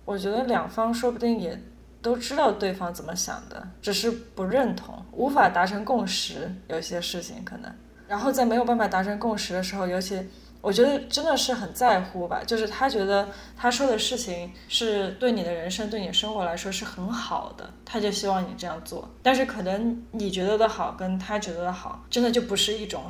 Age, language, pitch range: 20-39, Chinese, 190-235 Hz